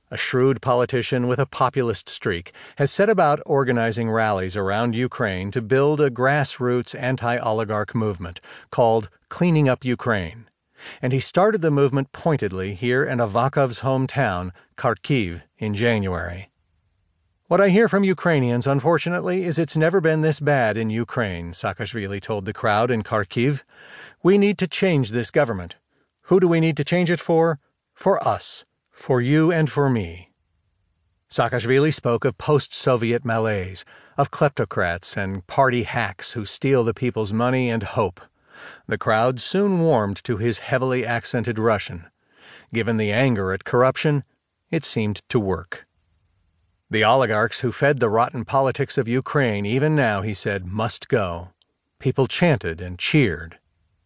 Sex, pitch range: male, 100-140 Hz